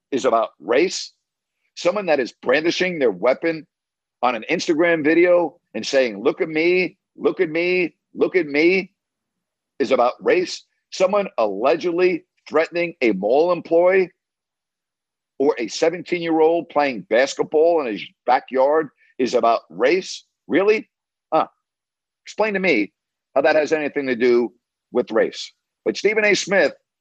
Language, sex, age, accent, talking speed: English, male, 50-69, American, 140 wpm